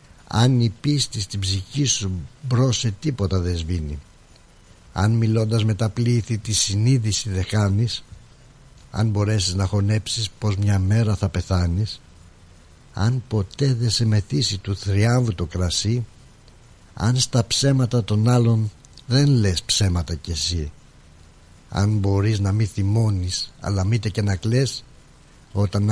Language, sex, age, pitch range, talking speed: Greek, male, 60-79, 95-120 Hz, 135 wpm